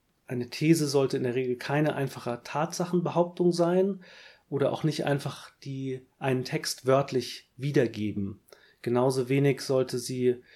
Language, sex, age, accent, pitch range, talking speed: German, male, 30-49, German, 130-170 Hz, 130 wpm